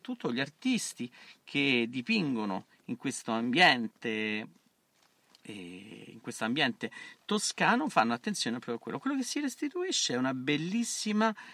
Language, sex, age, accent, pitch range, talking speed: Italian, male, 40-59, native, 115-160 Hz, 120 wpm